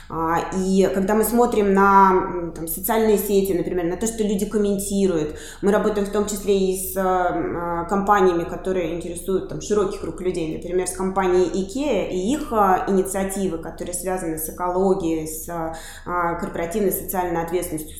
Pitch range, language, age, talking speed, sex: 170-195 Hz, Russian, 20-39, 135 wpm, female